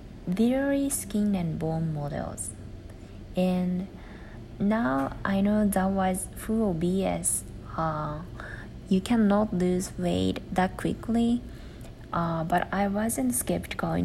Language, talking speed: English, 110 wpm